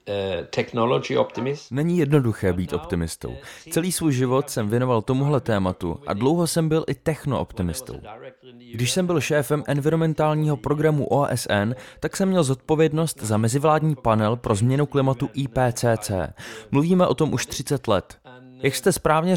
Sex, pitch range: male, 125-155 Hz